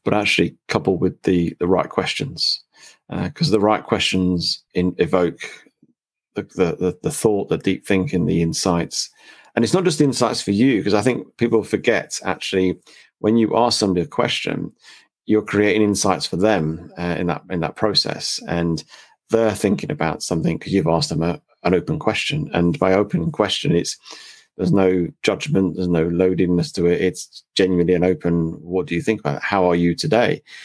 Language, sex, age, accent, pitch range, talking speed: English, male, 40-59, British, 85-110 Hz, 185 wpm